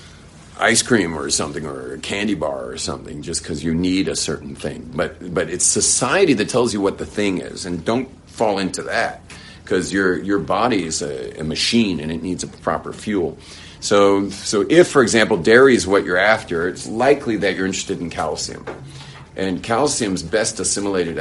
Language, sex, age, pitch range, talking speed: English, male, 40-59, 80-100 Hz, 195 wpm